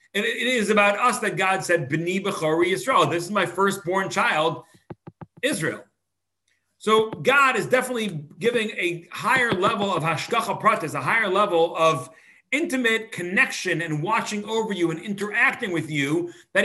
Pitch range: 125-200 Hz